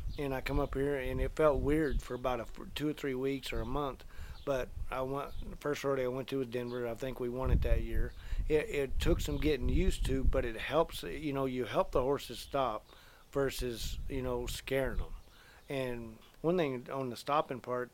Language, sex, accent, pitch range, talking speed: English, male, American, 115-135 Hz, 225 wpm